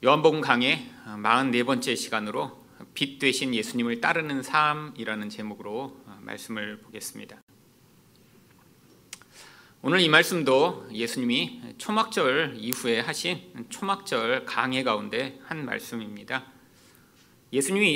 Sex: male